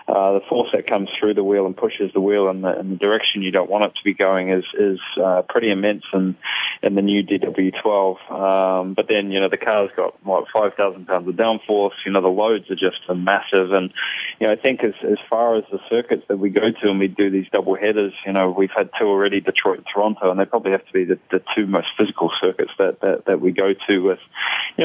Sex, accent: male, Australian